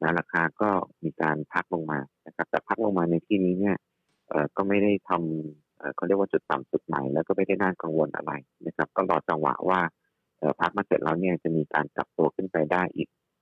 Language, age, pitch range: Thai, 30-49, 80-95 Hz